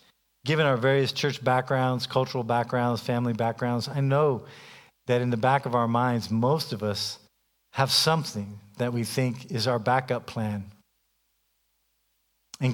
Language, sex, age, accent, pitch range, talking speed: English, male, 50-69, American, 105-130 Hz, 145 wpm